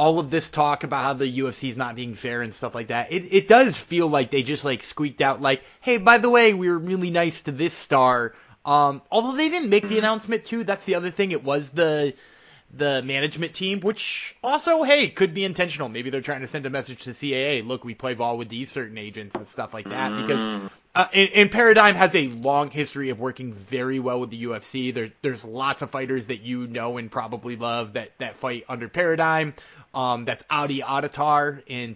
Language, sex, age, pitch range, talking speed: English, male, 20-39, 130-170 Hz, 225 wpm